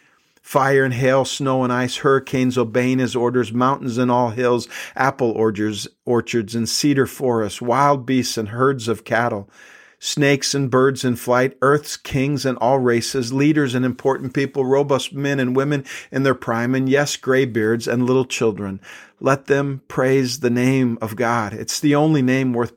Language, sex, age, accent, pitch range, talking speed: English, male, 50-69, American, 115-135 Hz, 170 wpm